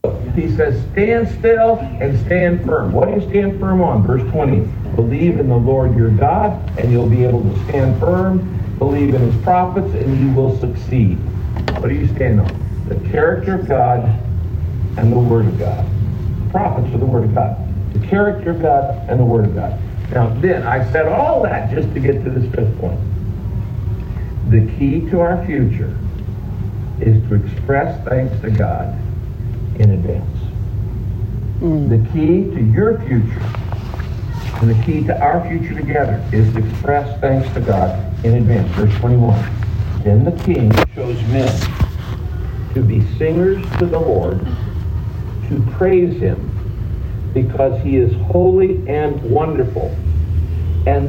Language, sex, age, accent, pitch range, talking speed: English, male, 50-69, American, 100-125 Hz, 155 wpm